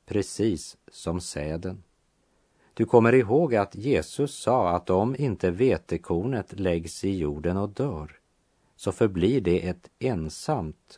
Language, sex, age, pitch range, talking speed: Swedish, male, 50-69, 90-115 Hz, 125 wpm